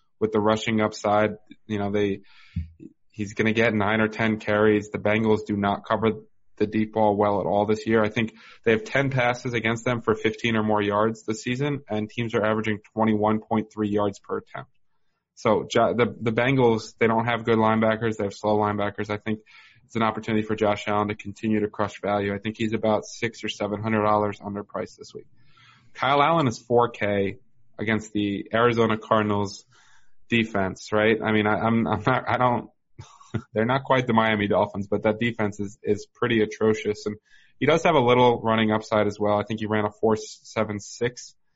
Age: 20-39